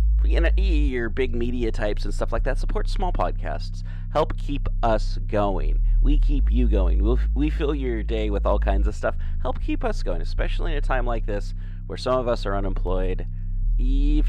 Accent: American